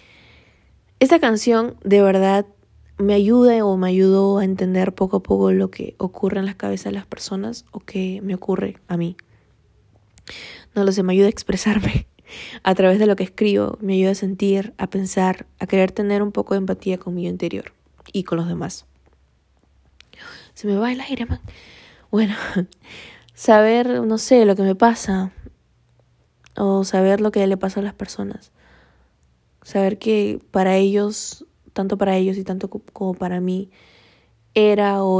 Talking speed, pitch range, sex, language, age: 170 wpm, 185-210 Hz, female, Spanish, 20-39